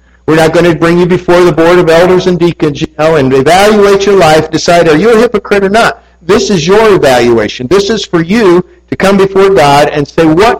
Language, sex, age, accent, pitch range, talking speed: English, male, 50-69, American, 120-185 Hz, 220 wpm